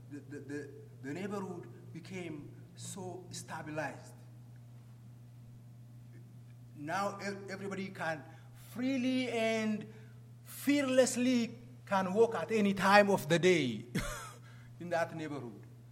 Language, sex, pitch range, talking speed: English, male, 120-180 Hz, 90 wpm